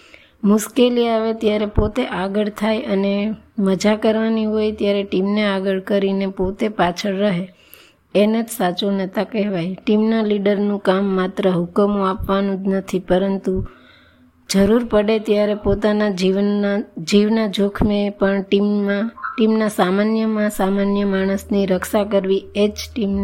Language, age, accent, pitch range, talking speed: Gujarati, 20-39, native, 195-210 Hz, 105 wpm